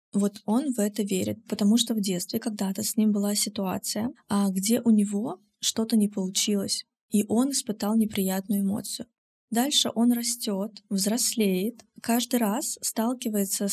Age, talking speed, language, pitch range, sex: 20-39, 140 wpm, Russian, 200-225 Hz, female